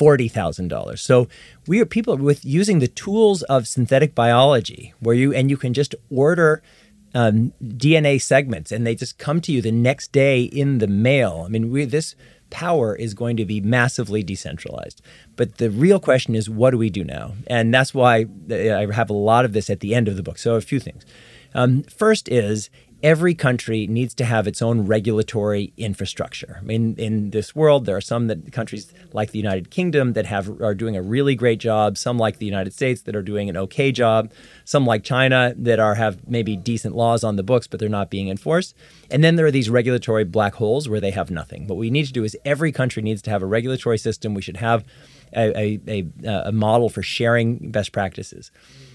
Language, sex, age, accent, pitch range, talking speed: English, male, 40-59, American, 110-135 Hz, 210 wpm